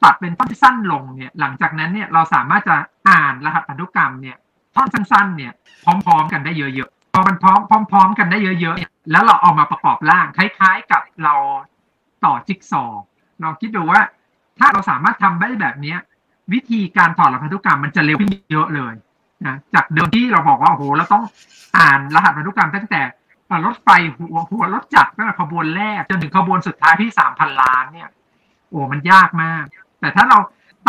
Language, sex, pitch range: Thai, male, 155-205 Hz